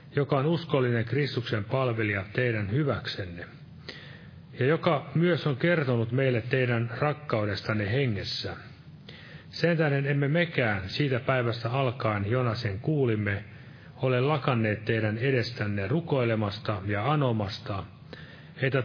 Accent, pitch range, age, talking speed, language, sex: native, 110-150 Hz, 30-49, 105 wpm, Finnish, male